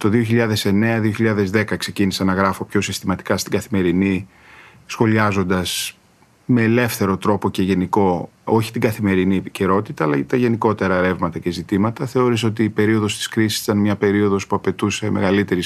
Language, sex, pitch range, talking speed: Greek, male, 100-125 Hz, 140 wpm